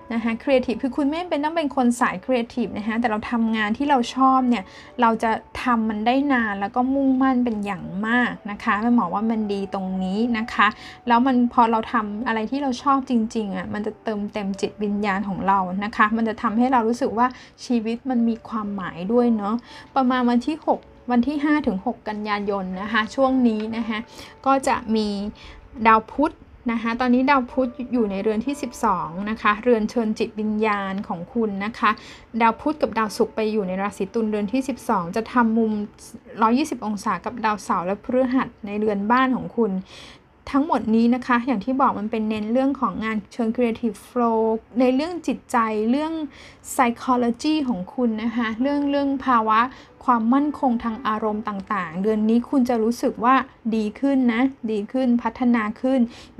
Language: Thai